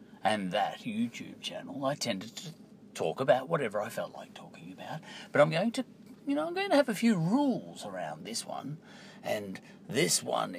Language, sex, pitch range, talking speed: English, male, 185-225 Hz, 195 wpm